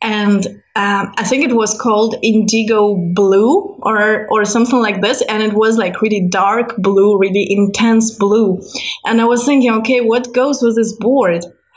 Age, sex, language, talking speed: 20-39, female, English, 175 wpm